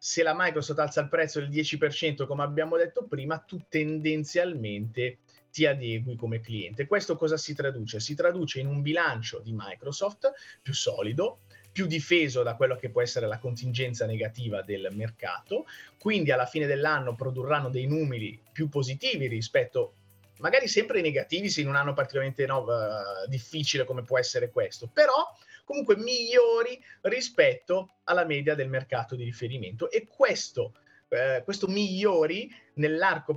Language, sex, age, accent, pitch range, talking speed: Italian, male, 30-49, native, 130-195 Hz, 150 wpm